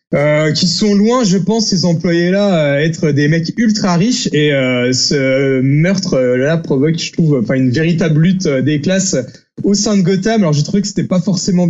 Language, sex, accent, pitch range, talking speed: French, male, French, 145-195 Hz, 190 wpm